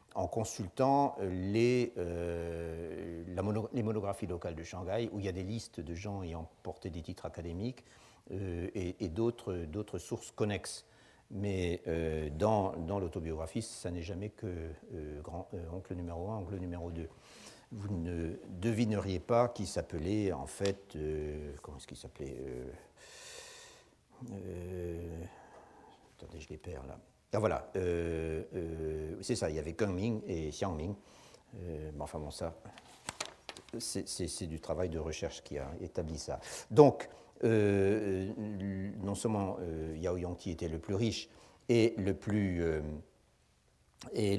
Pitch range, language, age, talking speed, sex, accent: 85-110 Hz, French, 60-79, 155 wpm, male, French